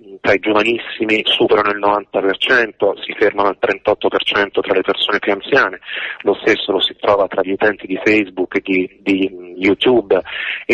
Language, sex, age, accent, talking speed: Italian, male, 40-59, native, 160 wpm